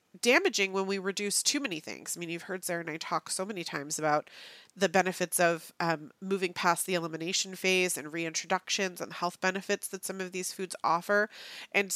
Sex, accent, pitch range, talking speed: female, American, 175-200 Hz, 200 wpm